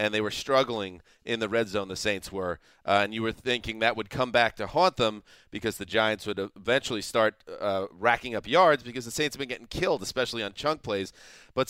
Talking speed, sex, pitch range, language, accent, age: 230 wpm, male, 105-135 Hz, English, American, 30-49